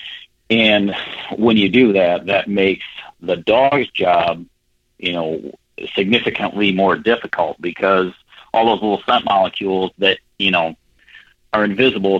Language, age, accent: English, 40-59, American